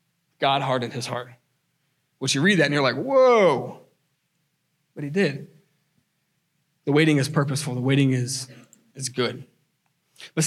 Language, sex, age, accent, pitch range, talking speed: English, male, 20-39, American, 135-160 Hz, 145 wpm